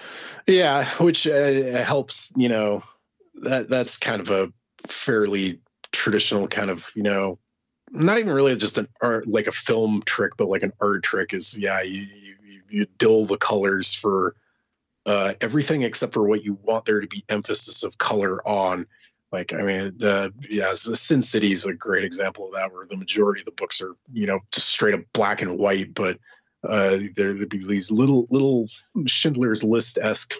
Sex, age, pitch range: male, 30-49, 100-125 Hz